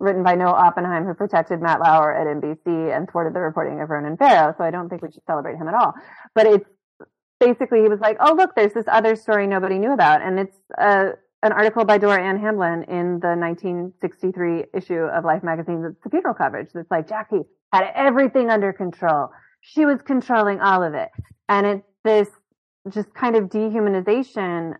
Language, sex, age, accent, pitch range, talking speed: English, female, 30-49, American, 165-215 Hz, 195 wpm